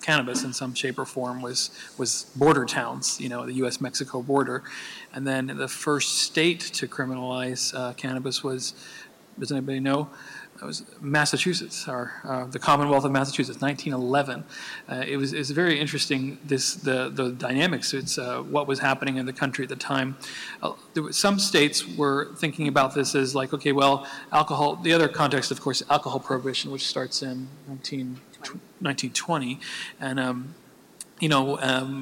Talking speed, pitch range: 170 wpm, 130-150 Hz